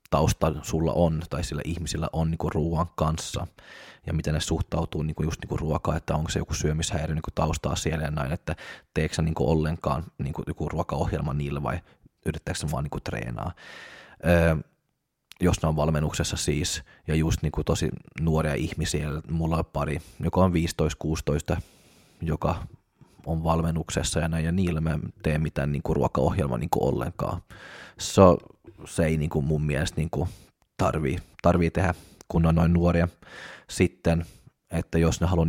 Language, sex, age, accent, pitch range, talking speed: Finnish, male, 20-39, native, 75-85 Hz, 165 wpm